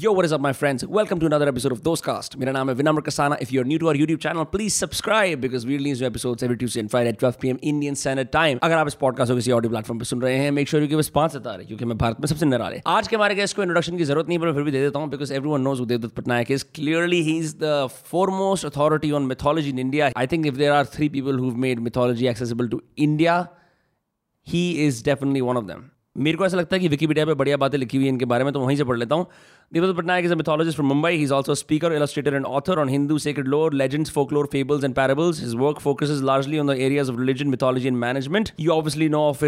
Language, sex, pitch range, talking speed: Hindi, male, 130-160 Hz, 270 wpm